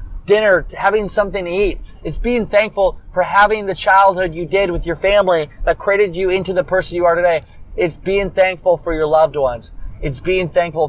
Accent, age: American, 20-39